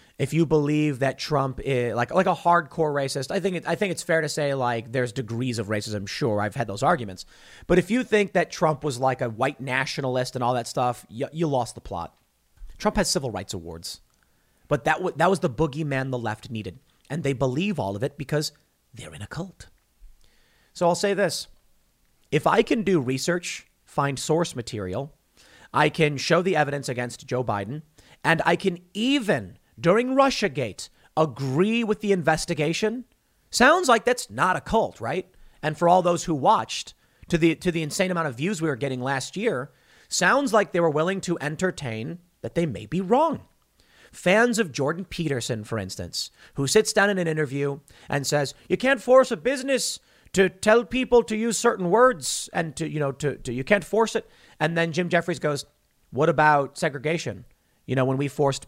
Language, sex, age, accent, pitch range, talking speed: English, male, 30-49, American, 130-185 Hz, 195 wpm